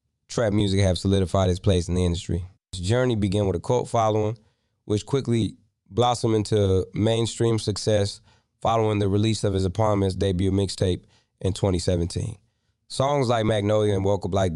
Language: English